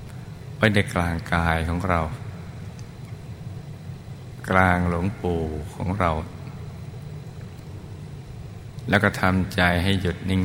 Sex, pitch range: male, 85-120 Hz